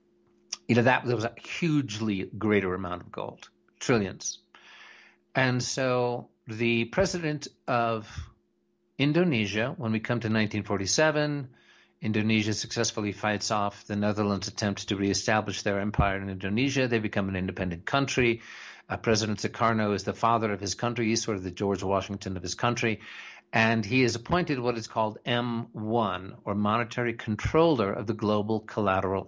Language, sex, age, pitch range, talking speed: English, male, 50-69, 100-120 Hz, 150 wpm